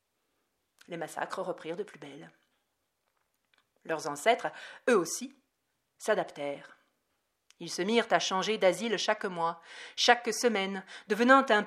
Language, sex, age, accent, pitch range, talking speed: French, female, 40-59, French, 170-225 Hz, 120 wpm